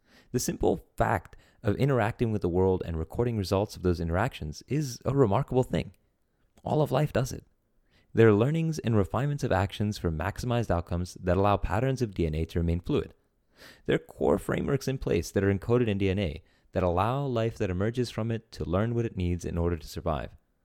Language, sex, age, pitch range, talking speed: English, male, 30-49, 90-120 Hz, 200 wpm